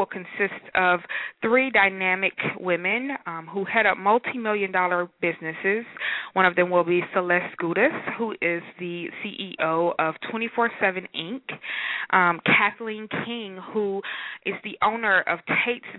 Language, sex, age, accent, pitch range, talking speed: English, female, 20-39, American, 170-215 Hz, 130 wpm